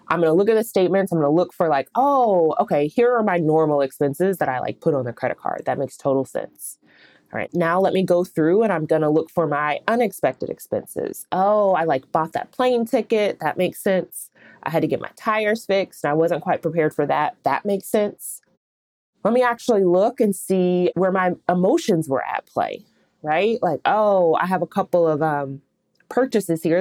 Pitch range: 165-220 Hz